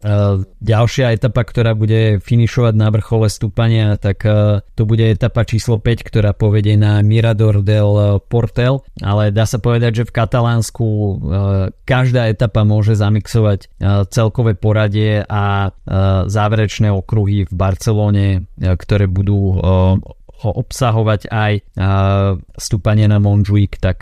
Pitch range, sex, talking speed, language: 100-115 Hz, male, 115 wpm, Slovak